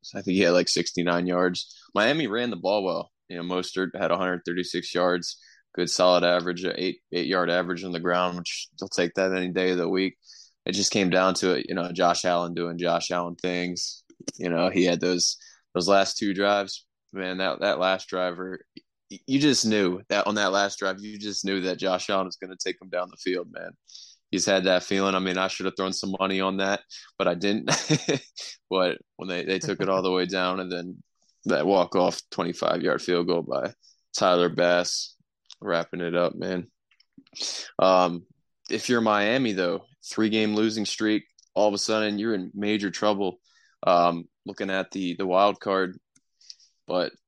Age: 20-39